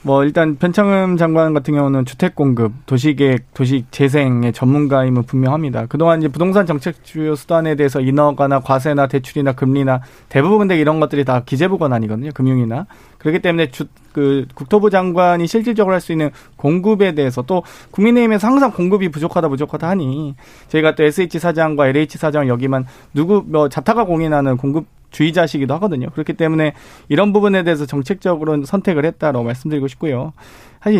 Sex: male